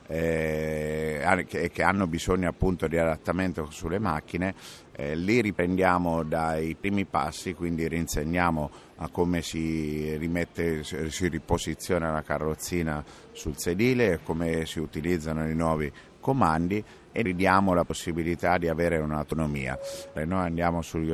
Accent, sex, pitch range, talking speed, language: native, male, 80-90 Hz, 130 wpm, Italian